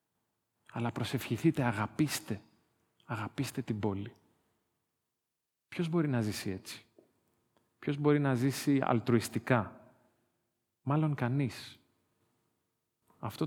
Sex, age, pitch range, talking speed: male, 40-59, 110-140 Hz, 85 wpm